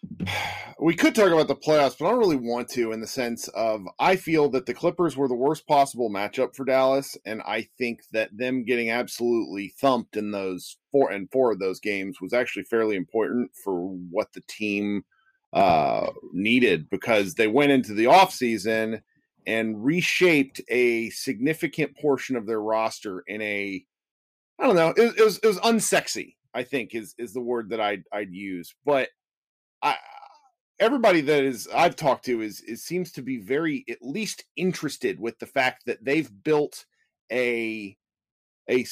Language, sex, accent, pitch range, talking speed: English, male, American, 110-165 Hz, 175 wpm